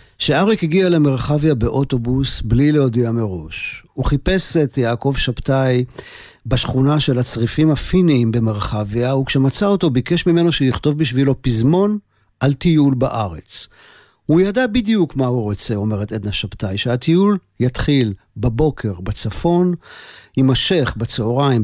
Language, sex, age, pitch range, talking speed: Hebrew, male, 50-69, 110-150 Hz, 115 wpm